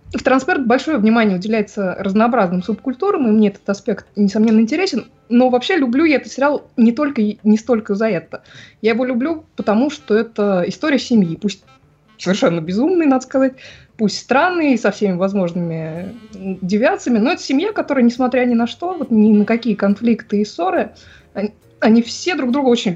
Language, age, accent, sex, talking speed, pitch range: Russian, 20-39, native, female, 165 wpm, 180-240 Hz